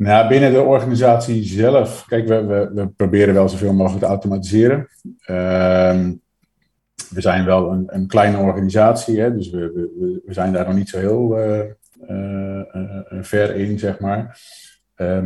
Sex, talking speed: male, 145 wpm